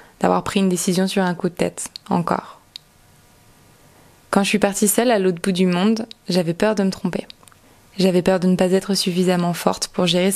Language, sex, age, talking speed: French, female, 20-39, 205 wpm